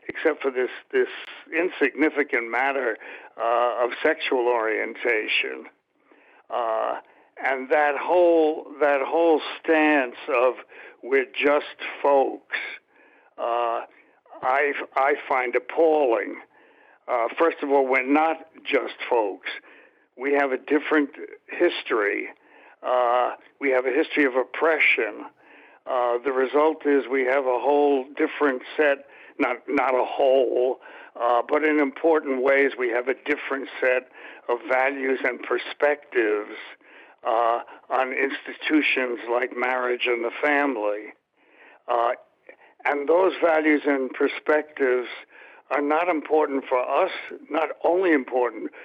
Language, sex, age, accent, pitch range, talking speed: English, male, 60-79, American, 130-160 Hz, 120 wpm